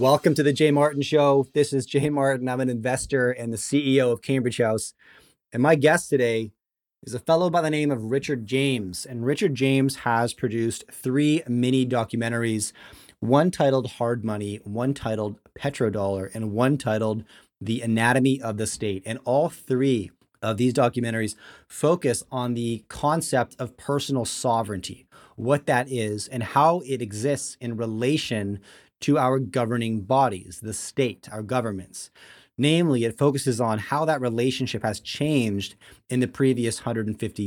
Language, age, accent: English, 30-49, American